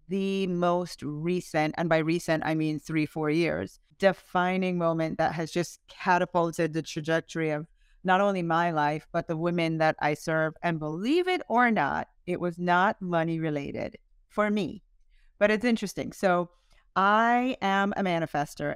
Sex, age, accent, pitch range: female, 40-59, American, 160-215 Hz